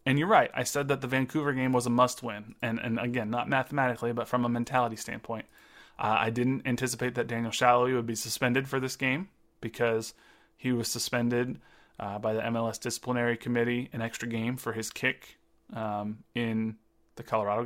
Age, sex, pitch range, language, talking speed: 30-49, male, 115-135 Hz, English, 185 wpm